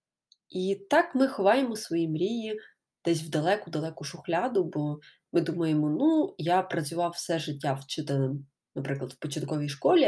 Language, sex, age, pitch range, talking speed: Ukrainian, female, 20-39, 150-200 Hz, 135 wpm